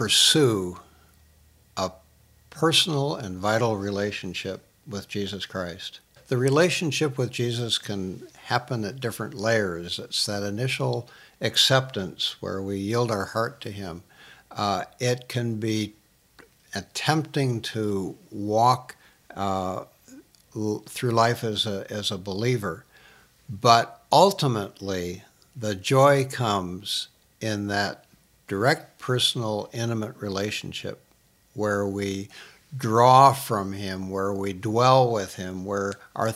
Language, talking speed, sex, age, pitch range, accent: English, 110 wpm, male, 60-79, 100-125 Hz, American